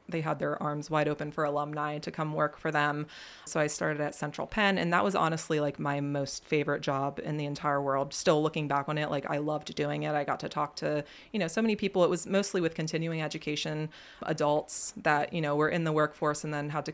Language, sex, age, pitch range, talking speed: English, female, 20-39, 145-165 Hz, 250 wpm